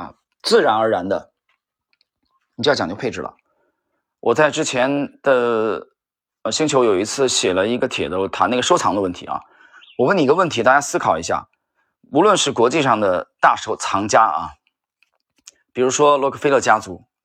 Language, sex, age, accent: Chinese, male, 20-39, native